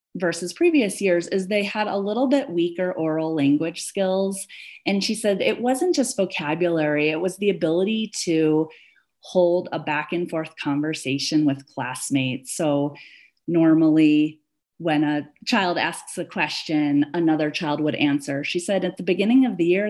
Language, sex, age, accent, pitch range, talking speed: English, female, 30-49, American, 150-195 Hz, 160 wpm